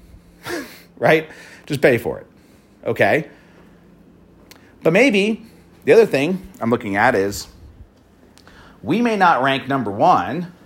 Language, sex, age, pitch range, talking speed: English, male, 40-59, 115-180 Hz, 120 wpm